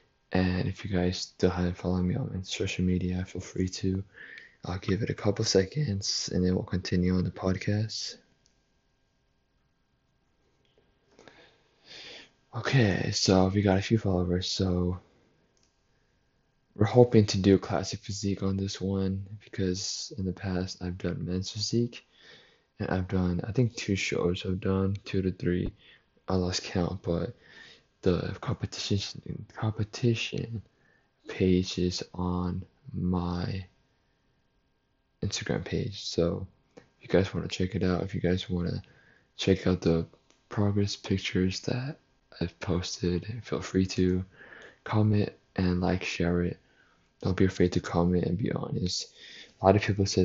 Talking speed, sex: 140 wpm, male